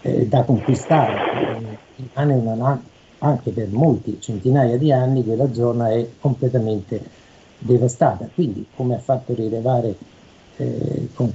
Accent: native